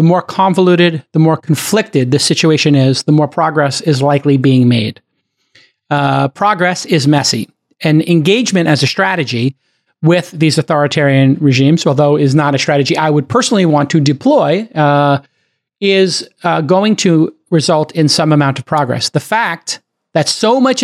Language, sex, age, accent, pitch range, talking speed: English, male, 40-59, American, 140-180 Hz, 160 wpm